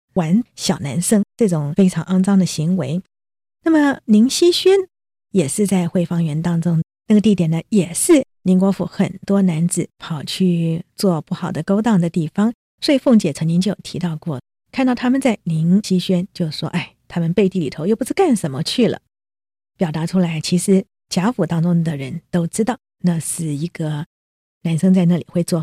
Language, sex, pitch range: Chinese, female, 165-210 Hz